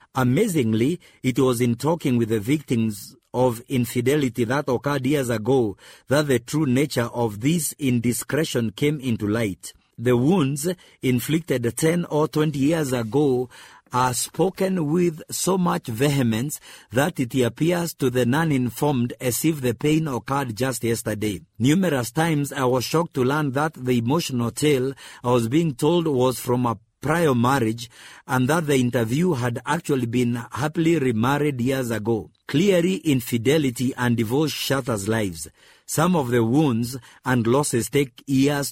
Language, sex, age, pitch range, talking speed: English, male, 50-69, 120-150 Hz, 150 wpm